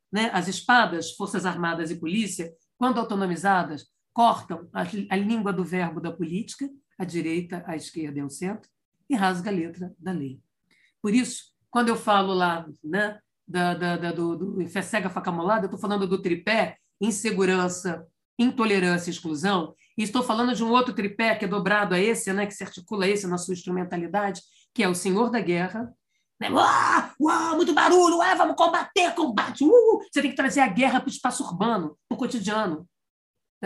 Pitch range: 180-245 Hz